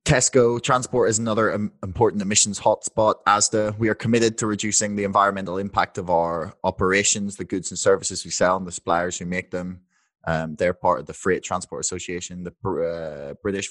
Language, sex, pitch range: English, male, 95-125 Hz